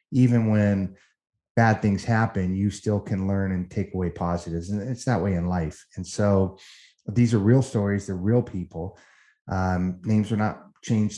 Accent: American